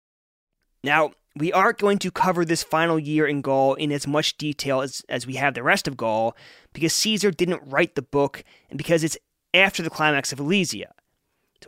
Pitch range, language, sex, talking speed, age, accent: 140-170 Hz, English, male, 195 wpm, 20-39, American